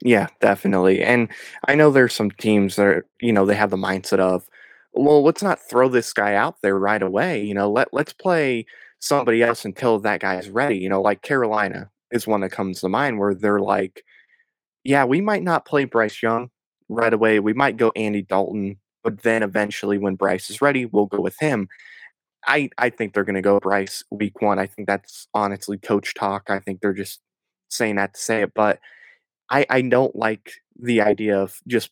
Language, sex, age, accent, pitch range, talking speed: English, male, 20-39, American, 100-120 Hz, 210 wpm